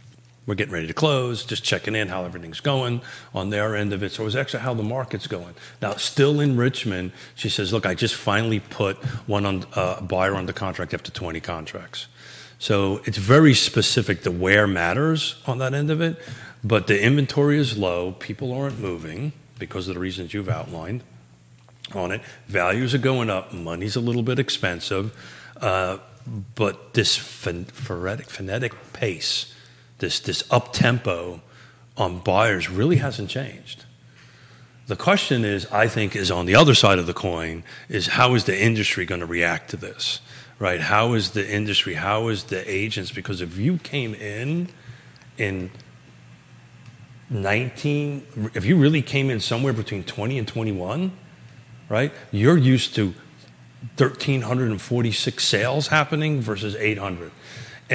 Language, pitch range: English, 95-130 Hz